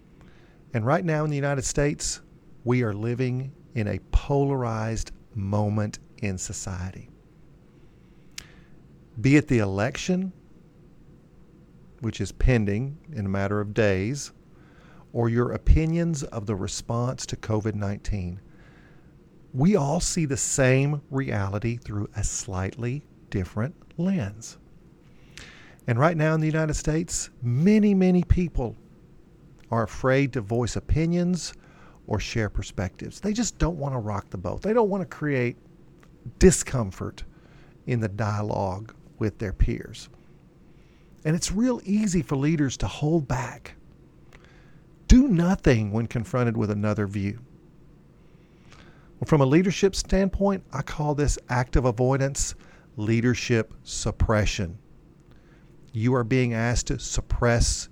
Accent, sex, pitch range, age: American, male, 110-160 Hz, 50-69